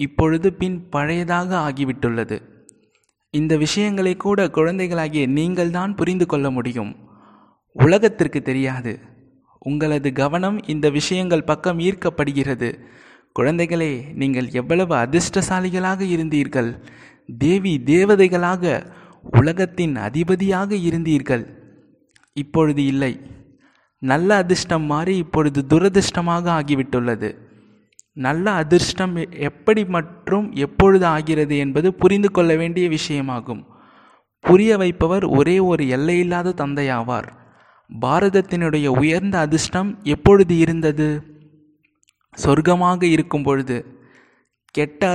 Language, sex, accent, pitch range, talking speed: Tamil, male, native, 140-180 Hz, 85 wpm